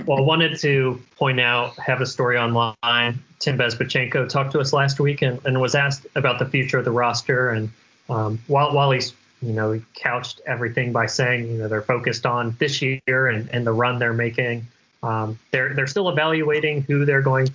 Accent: American